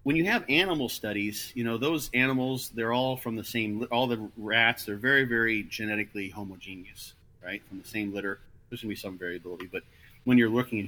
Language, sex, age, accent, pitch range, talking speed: English, male, 40-59, American, 100-115 Hz, 210 wpm